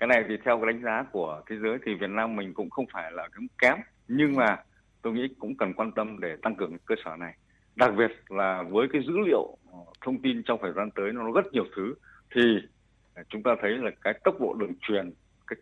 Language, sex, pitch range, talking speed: Vietnamese, male, 105-140 Hz, 240 wpm